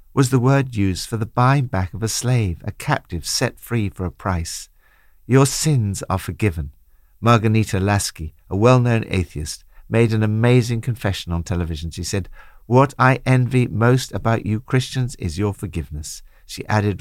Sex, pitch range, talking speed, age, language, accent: male, 90-135 Hz, 165 wpm, 60-79, English, British